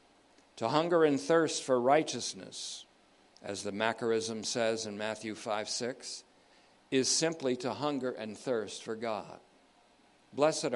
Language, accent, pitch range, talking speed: English, American, 115-140 Hz, 130 wpm